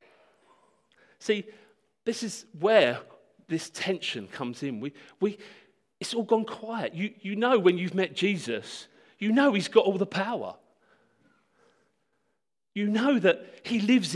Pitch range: 170-235 Hz